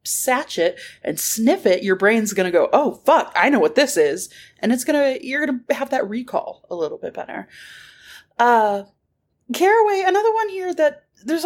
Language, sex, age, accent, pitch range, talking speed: English, female, 30-49, American, 190-290 Hz, 185 wpm